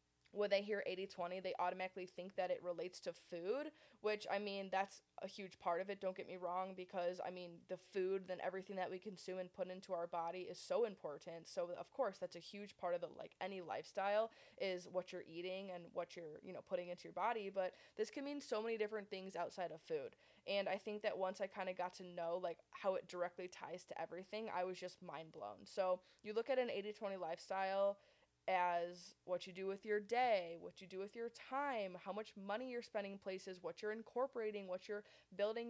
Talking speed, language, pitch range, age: 225 wpm, English, 180-210 Hz, 20-39